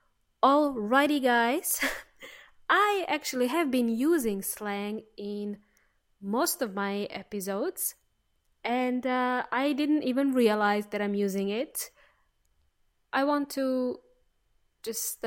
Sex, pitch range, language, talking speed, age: female, 200-255 Hz, English, 105 wpm, 20-39